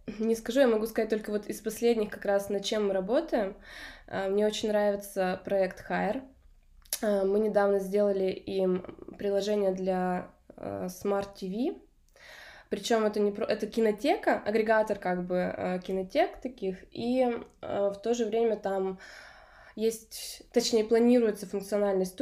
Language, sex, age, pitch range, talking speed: Russian, female, 20-39, 195-235 Hz, 130 wpm